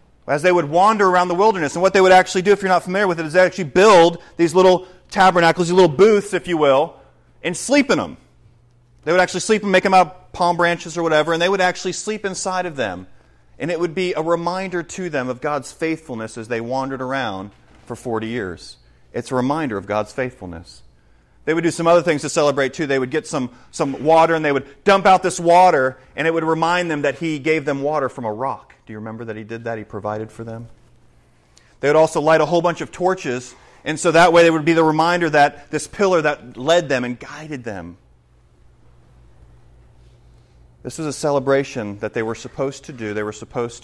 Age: 40-59